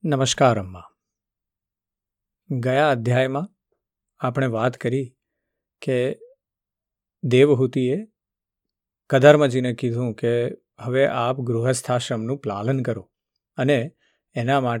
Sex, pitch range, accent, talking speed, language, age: male, 115-135 Hz, native, 80 wpm, Gujarati, 50-69